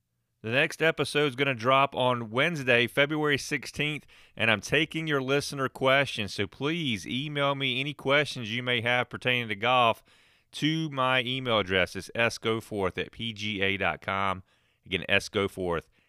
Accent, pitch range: American, 95-125 Hz